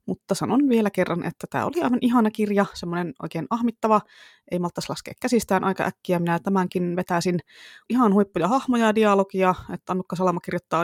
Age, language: 20-39, Finnish